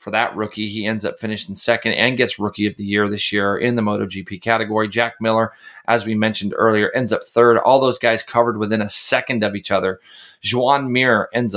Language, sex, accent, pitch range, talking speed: English, male, American, 105-120 Hz, 220 wpm